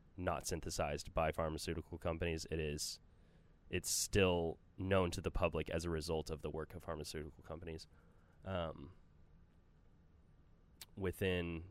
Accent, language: American, English